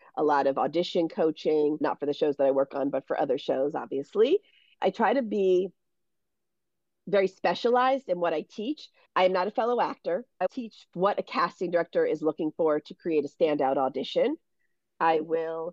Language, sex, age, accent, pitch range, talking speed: English, female, 40-59, American, 160-240 Hz, 190 wpm